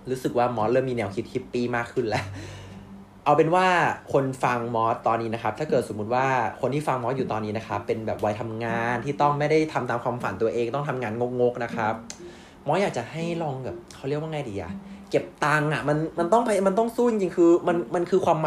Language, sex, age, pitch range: Thai, male, 20-39, 115-165 Hz